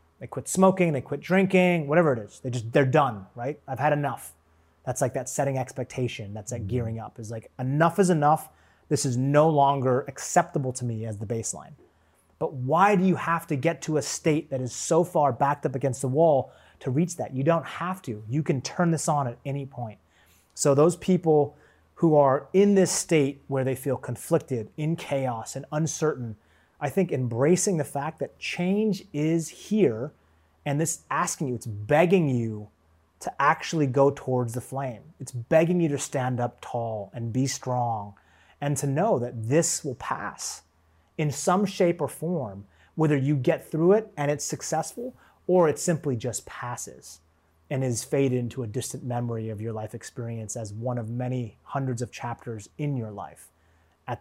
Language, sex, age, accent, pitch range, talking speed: English, male, 30-49, American, 120-155 Hz, 190 wpm